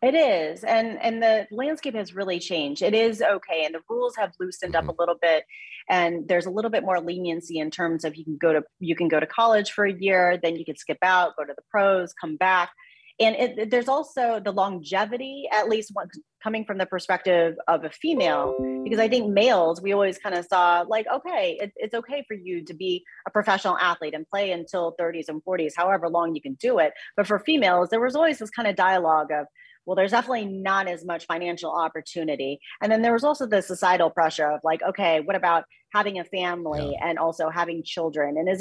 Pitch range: 165-215 Hz